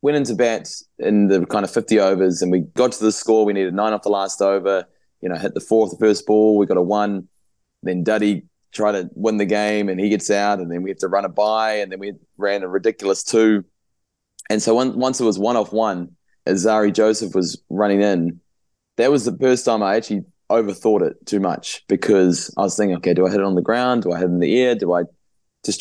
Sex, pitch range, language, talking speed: male, 95-110 Hz, English, 250 wpm